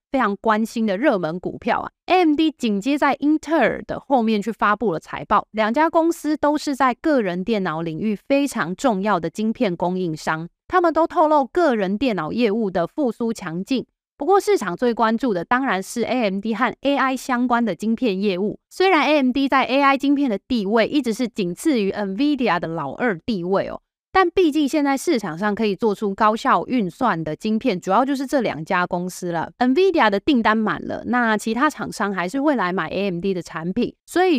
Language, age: Chinese, 20-39